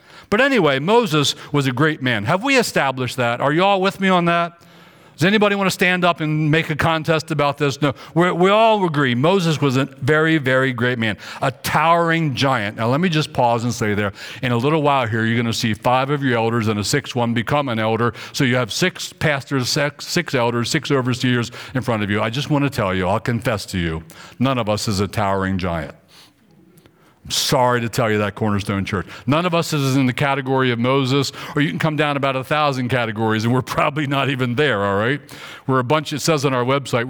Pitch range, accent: 115-155 Hz, American